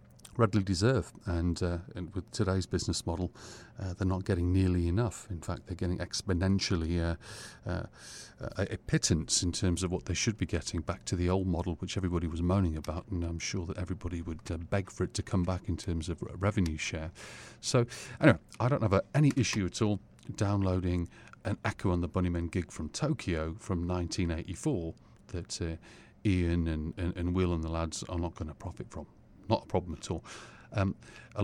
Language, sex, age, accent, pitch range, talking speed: English, male, 40-59, British, 85-105 Hz, 200 wpm